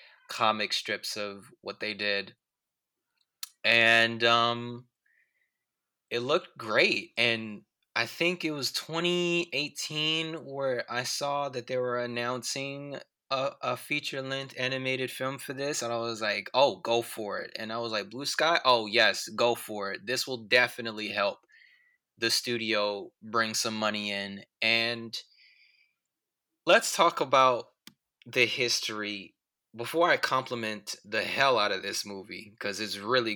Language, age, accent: English, 20-39, American